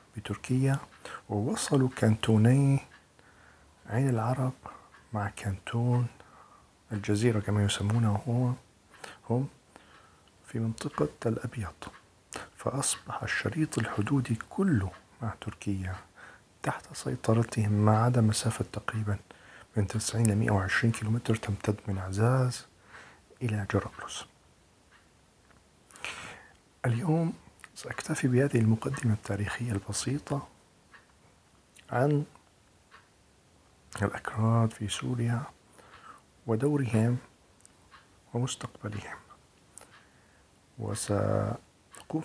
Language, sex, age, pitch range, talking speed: English, male, 50-69, 105-125 Hz, 70 wpm